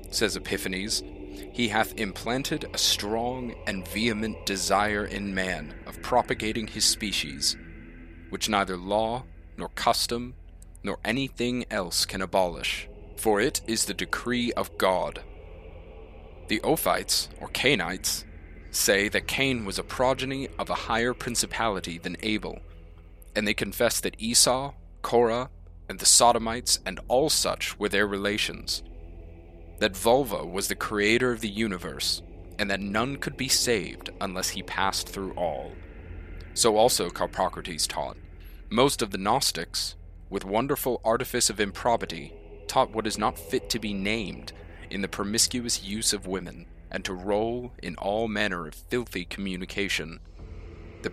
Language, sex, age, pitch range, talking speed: English, male, 30-49, 85-110 Hz, 140 wpm